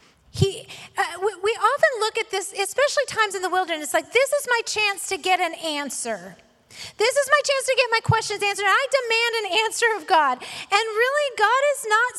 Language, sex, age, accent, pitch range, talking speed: English, female, 30-49, American, 310-420 Hz, 200 wpm